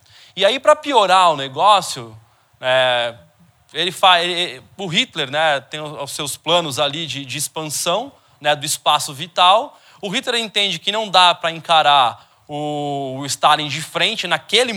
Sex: male